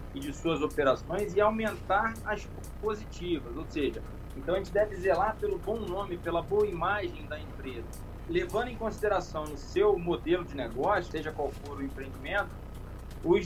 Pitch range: 150-210 Hz